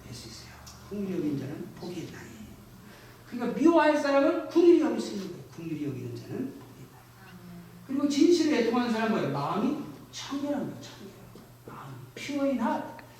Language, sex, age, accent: Korean, male, 40-59, native